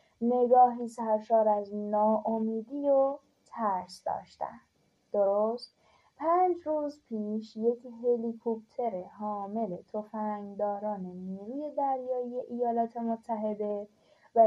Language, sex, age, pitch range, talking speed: Persian, female, 10-29, 200-245 Hz, 85 wpm